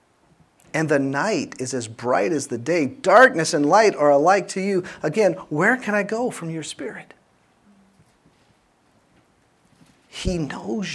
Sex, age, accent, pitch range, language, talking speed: male, 40-59, American, 130-195 Hz, English, 145 wpm